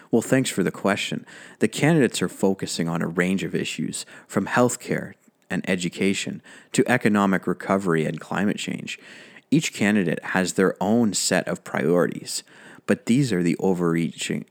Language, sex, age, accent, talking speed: English, male, 30-49, American, 155 wpm